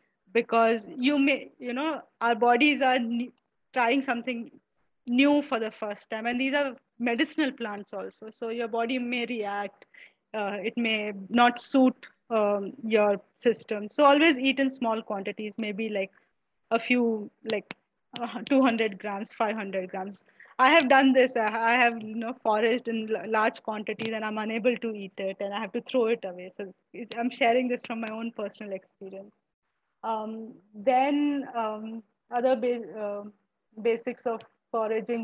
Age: 20-39